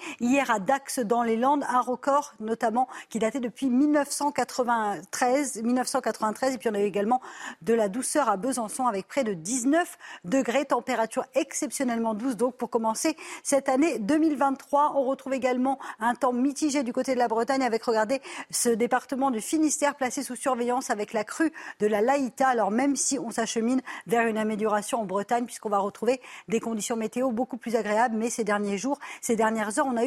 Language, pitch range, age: French, 230-275 Hz, 50-69